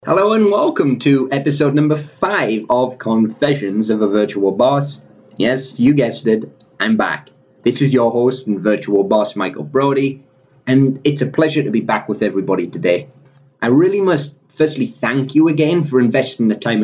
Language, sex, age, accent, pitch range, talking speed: English, male, 30-49, British, 110-140 Hz, 175 wpm